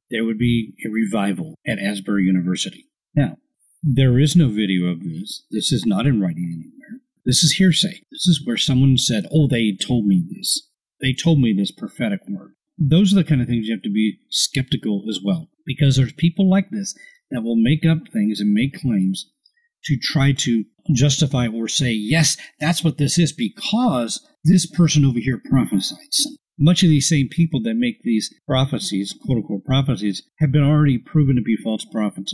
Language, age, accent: English, 40-59, American